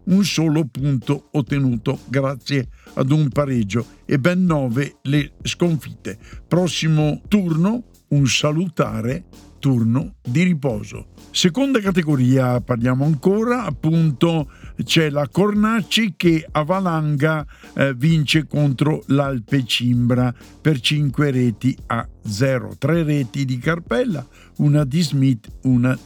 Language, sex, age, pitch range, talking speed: Italian, male, 50-69, 130-170 Hz, 115 wpm